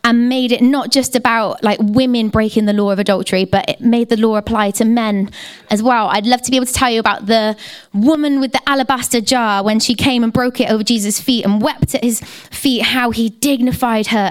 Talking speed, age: 235 wpm, 20-39